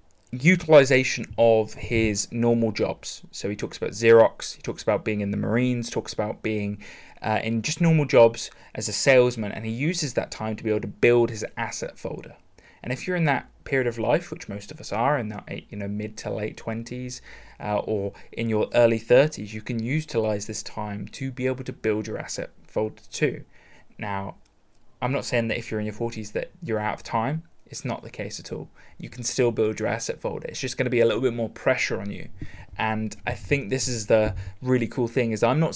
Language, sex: English, male